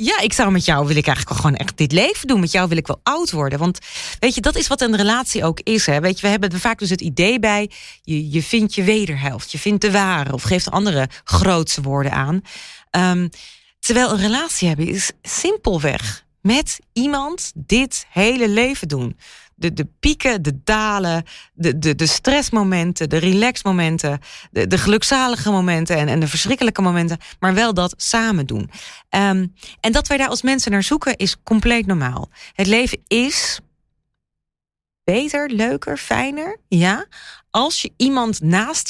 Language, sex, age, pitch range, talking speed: Dutch, female, 30-49, 150-220 Hz, 180 wpm